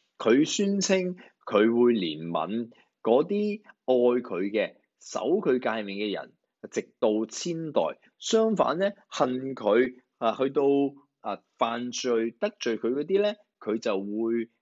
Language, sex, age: Chinese, male, 20-39